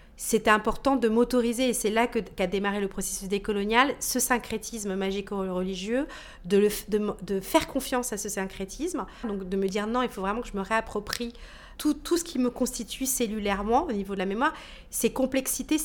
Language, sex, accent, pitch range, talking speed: French, female, French, 200-250 Hz, 195 wpm